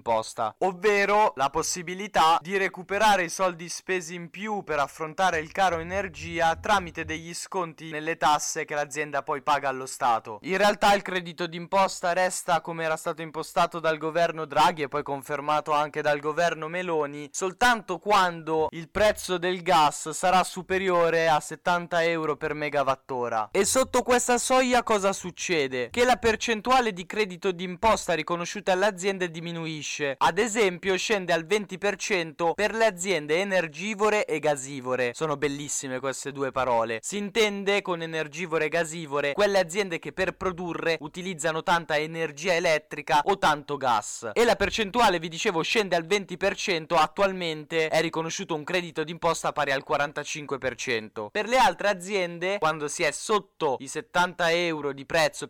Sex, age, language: male, 10-29, Italian